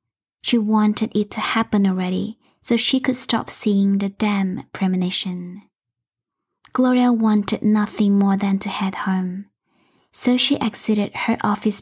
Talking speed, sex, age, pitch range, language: 135 wpm, female, 10-29, 195-235 Hz, English